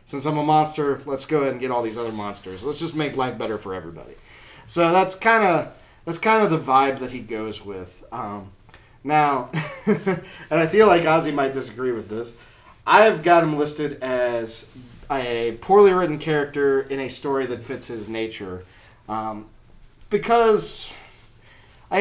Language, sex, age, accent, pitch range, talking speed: English, male, 30-49, American, 115-155 Hz, 170 wpm